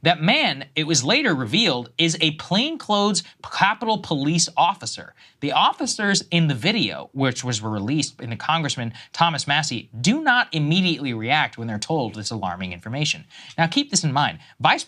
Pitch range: 125-175 Hz